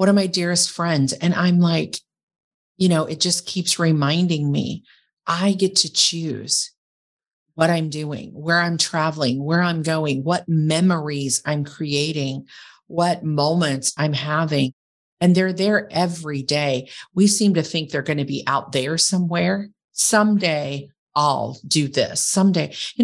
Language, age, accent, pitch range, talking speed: English, 40-59, American, 160-225 Hz, 150 wpm